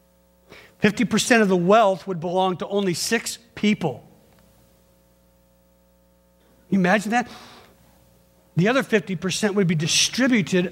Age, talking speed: 50-69, 110 wpm